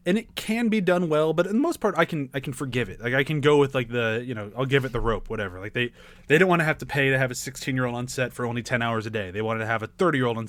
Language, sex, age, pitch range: English, male, 20-39, 120-165 Hz